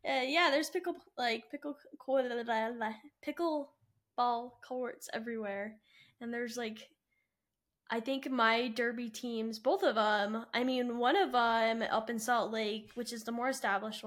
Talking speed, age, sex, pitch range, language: 150 wpm, 10-29, female, 215-245 Hz, English